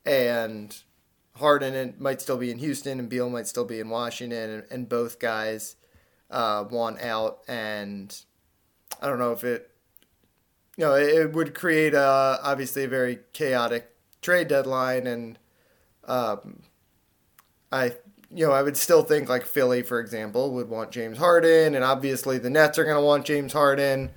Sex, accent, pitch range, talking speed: male, American, 115-150 Hz, 160 wpm